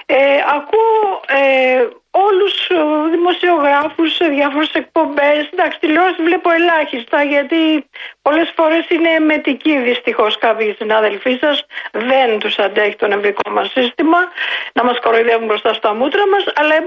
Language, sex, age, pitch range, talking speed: Greek, female, 50-69, 265-370 Hz, 130 wpm